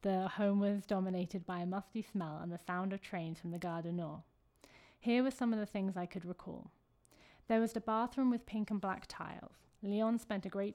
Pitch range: 180-205 Hz